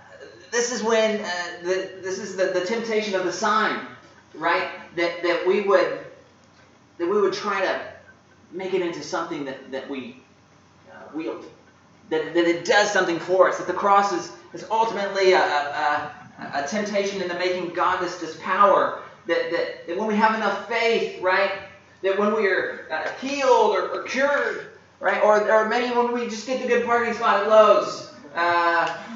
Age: 30-49